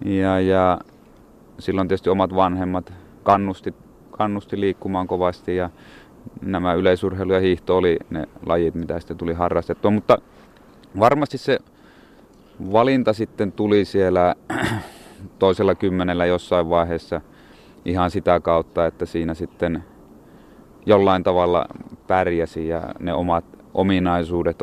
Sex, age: male, 30-49